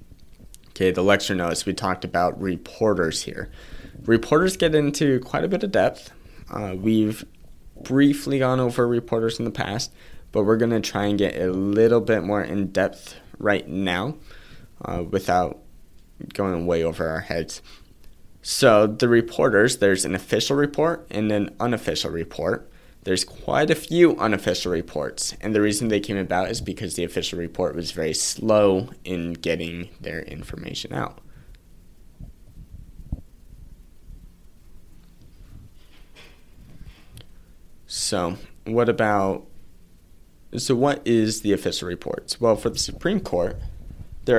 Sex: male